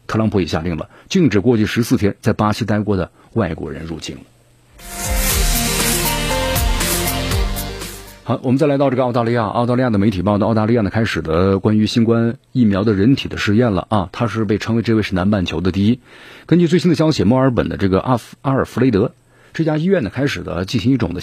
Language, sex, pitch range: Chinese, male, 95-120 Hz